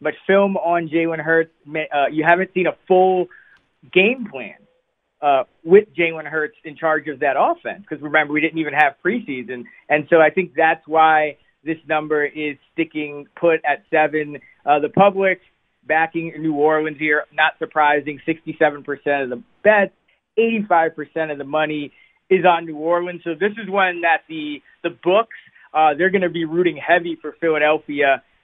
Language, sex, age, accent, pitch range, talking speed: English, male, 30-49, American, 145-170 Hz, 170 wpm